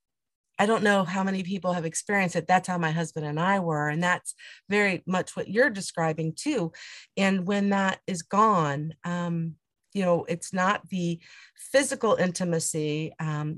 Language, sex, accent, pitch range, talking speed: English, female, American, 160-190 Hz, 170 wpm